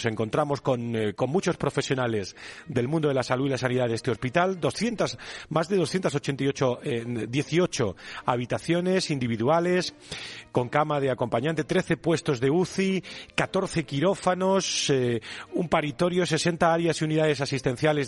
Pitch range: 130-170 Hz